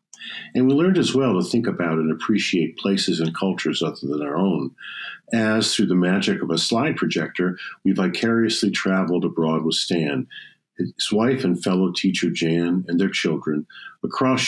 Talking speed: 170 wpm